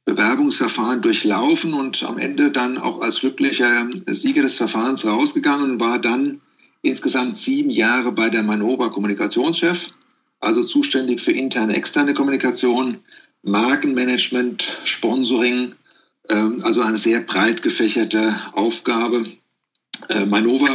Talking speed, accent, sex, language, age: 110 wpm, German, male, German, 50-69